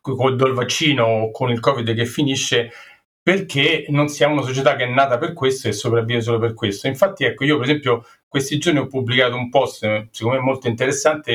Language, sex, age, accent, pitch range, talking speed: Italian, male, 40-59, native, 115-145 Hz, 205 wpm